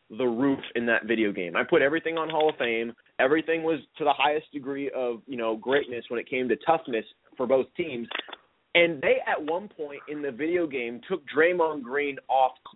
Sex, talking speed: male, 205 wpm